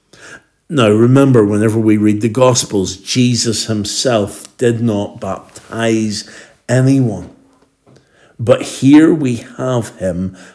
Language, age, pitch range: English, 60-79, 105-125 Hz